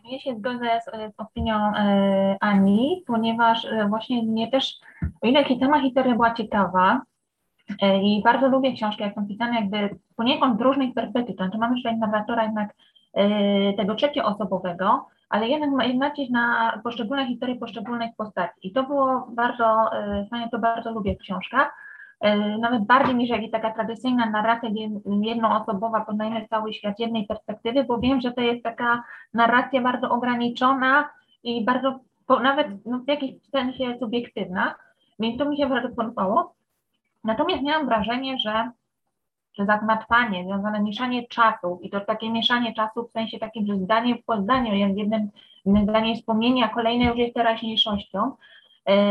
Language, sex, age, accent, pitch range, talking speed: Polish, female, 20-39, native, 215-250 Hz, 155 wpm